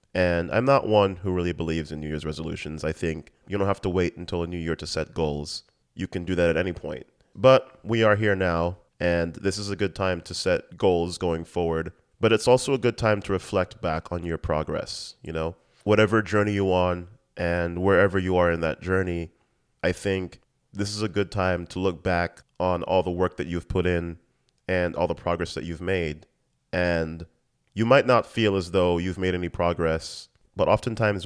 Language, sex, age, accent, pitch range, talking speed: English, male, 30-49, American, 85-95 Hz, 215 wpm